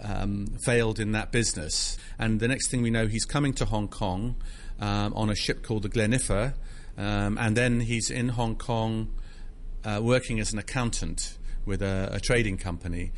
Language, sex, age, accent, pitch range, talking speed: English, male, 40-59, British, 95-110 Hz, 180 wpm